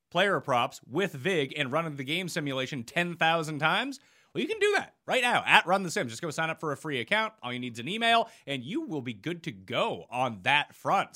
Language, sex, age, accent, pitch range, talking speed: English, male, 30-49, American, 130-175 Hz, 235 wpm